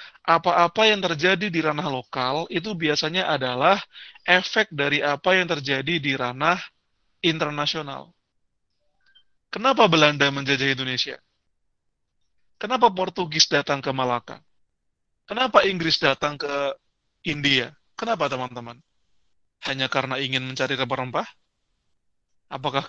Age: 30-49